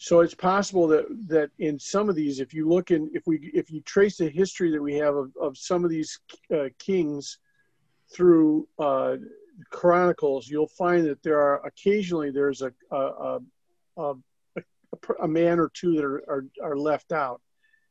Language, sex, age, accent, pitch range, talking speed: English, male, 50-69, American, 145-180 Hz, 185 wpm